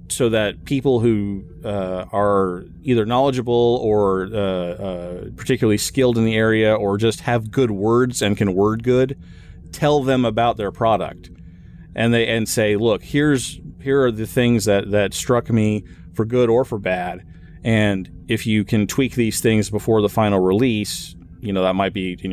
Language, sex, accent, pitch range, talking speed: English, male, American, 100-120 Hz, 175 wpm